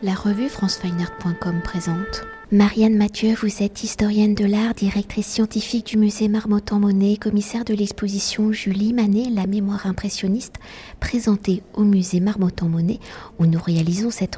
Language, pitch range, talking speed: French, 185-220 Hz, 135 wpm